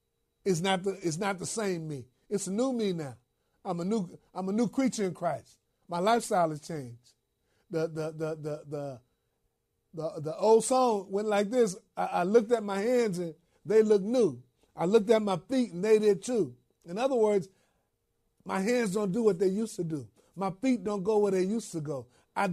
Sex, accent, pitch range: male, American, 165-225 Hz